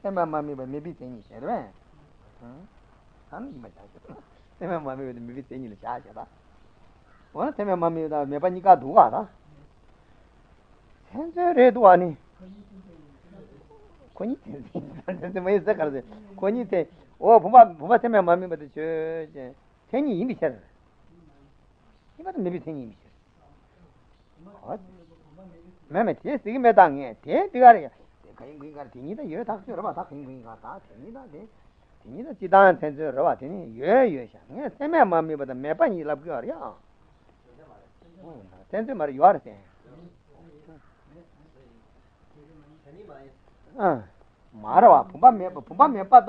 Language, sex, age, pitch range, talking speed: Italian, male, 40-59, 145-220 Hz, 110 wpm